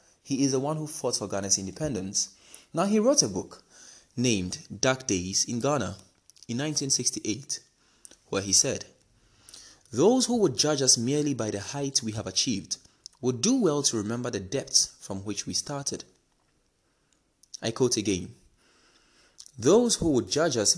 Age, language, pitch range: 20-39, English, 105-155 Hz